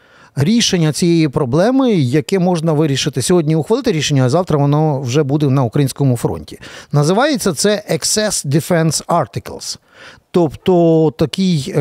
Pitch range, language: 150-200 Hz, Ukrainian